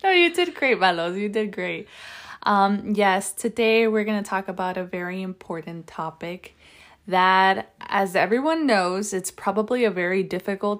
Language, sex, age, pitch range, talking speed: English, female, 20-39, 170-210 Hz, 160 wpm